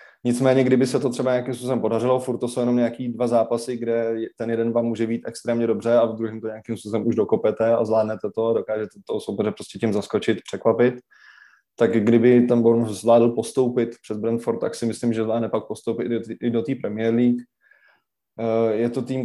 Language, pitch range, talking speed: Czech, 110-120 Hz, 205 wpm